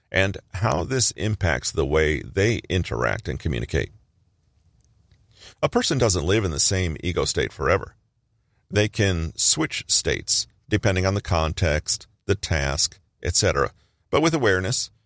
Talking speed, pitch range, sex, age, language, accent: 135 wpm, 90-110 Hz, male, 40-59, English, American